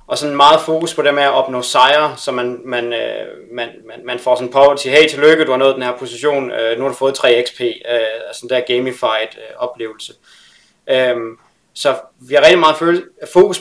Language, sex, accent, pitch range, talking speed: Danish, male, native, 125-155 Hz, 195 wpm